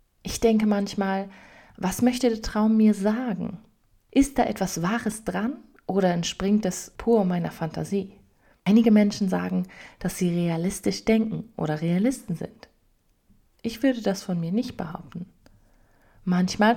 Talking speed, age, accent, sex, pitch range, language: 135 wpm, 30-49, German, female, 180-225 Hz, German